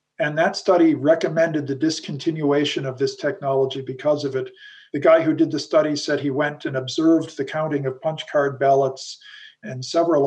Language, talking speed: English, 180 wpm